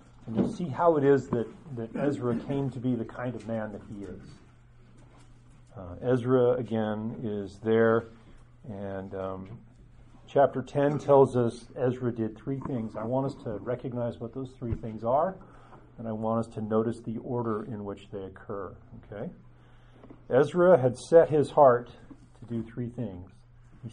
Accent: American